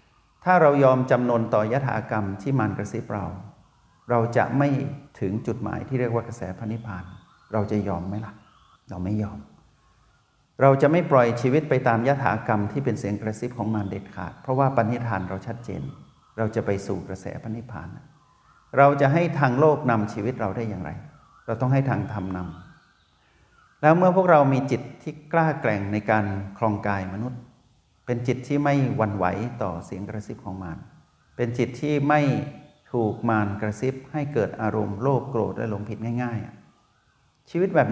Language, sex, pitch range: Thai, male, 105-130 Hz